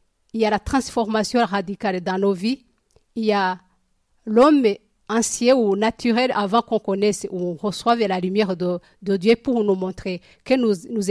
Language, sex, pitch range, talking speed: French, female, 195-235 Hz, 175 wpm